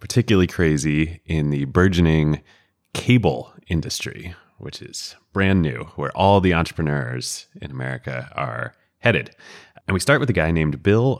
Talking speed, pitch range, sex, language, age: 145 wpm, 80-100 Hz, male, English, 30-49